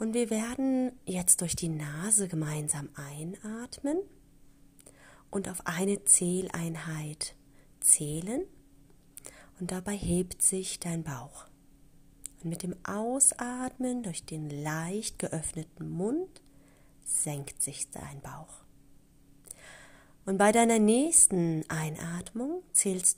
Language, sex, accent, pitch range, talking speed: German, female, German, 145-200 Hz, 100 wpm